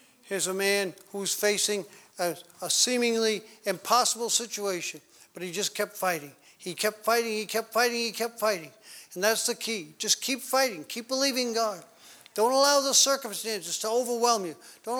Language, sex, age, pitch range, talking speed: English, male, 50-69, 195-245 Hz, 170 wpm